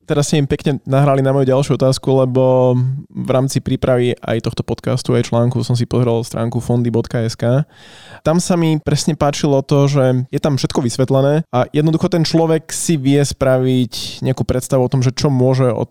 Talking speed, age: 185 wpm, 20-39